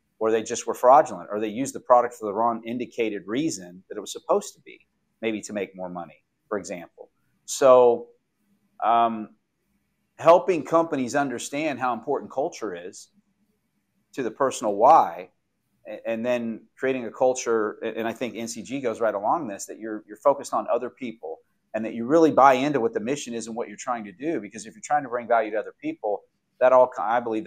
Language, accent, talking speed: English, American, 200 wpm